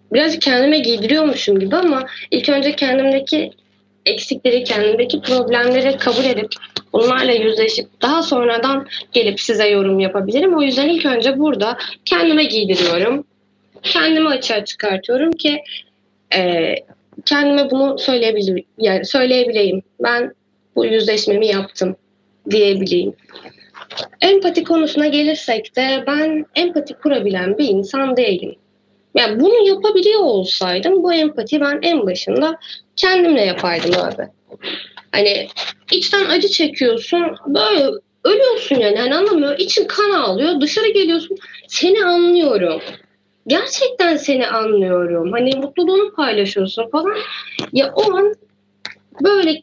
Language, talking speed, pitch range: Turkish, 110 wpm, 220-335 Hz